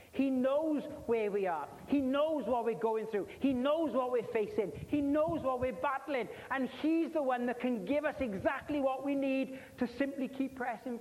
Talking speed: 200 wpm